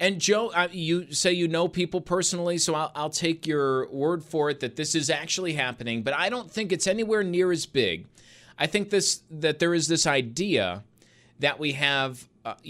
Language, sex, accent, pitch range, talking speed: English, male, American, 125-180 Hz, 200 wpm